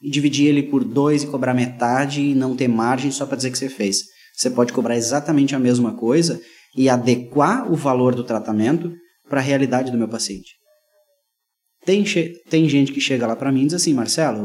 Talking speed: 210 wpm